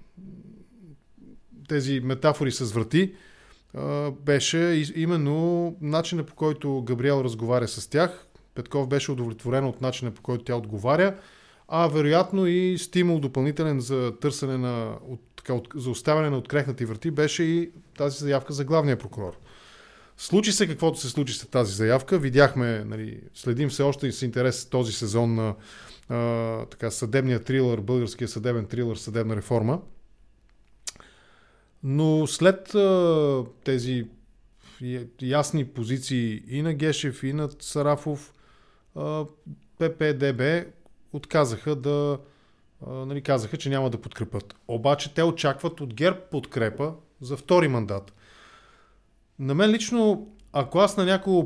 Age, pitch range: 20-39, 120-155 Hz